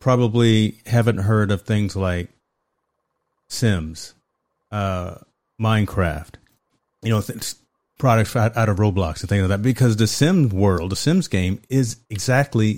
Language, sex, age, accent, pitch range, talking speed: English, male, 30-49, American, 100-120 Hz, 130 wpm